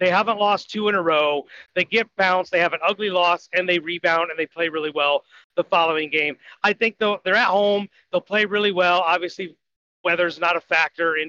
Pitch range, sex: 170-205 Hz, male